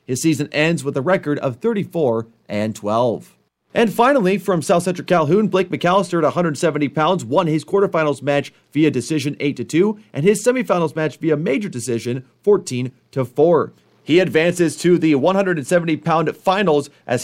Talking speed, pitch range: 145 wpm, 135-185 Hz